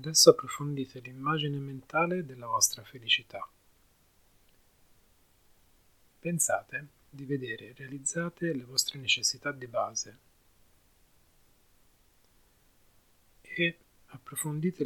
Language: Italian